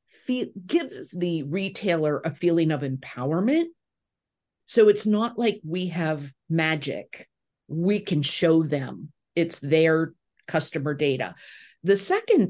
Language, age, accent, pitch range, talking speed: English, 50-69, American, 150-195 Hz, 115 wpm